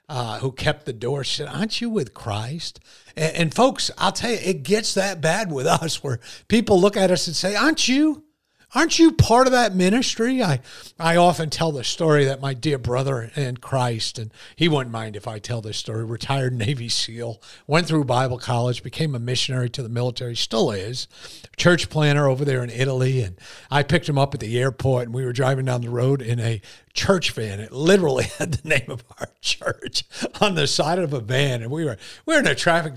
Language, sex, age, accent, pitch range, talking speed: English, male, 50-69, American, 125-175 Hz, 220 wpm